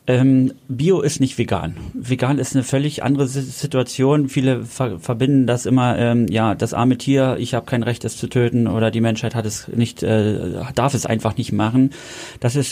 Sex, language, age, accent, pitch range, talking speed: male, German, 30-49, German, 115-130 Hz, 190 wpm